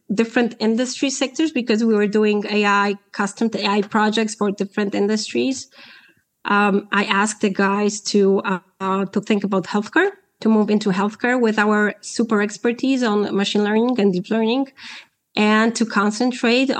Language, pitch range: English, 200-225 Hz